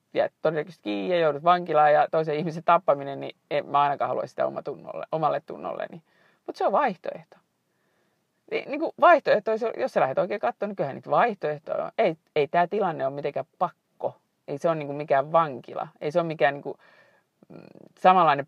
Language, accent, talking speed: Finnish, native, 170 wpm